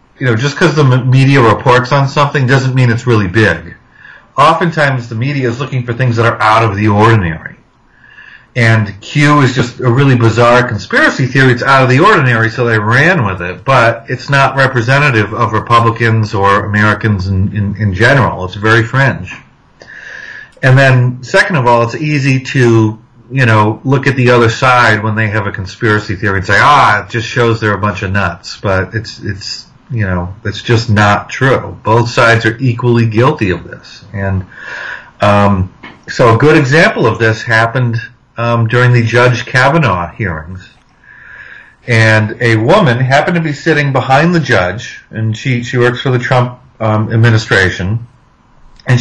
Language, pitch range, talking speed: English, 110-130 Hz, 175 wpm